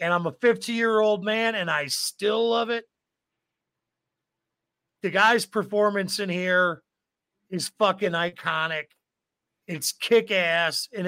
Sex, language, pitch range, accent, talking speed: male, English, 175-220 Hz, American, 115 wpm